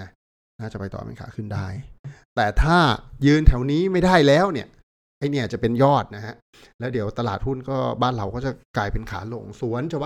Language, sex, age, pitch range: Thai, male, 60-79, 105-135 Hz